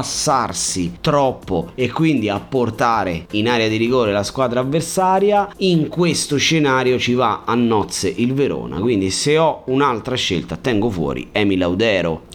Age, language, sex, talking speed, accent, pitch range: 30-49, Italian, male, 145 wpm, native, 135-190 Hz